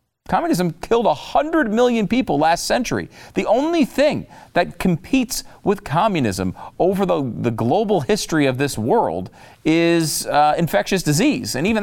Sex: male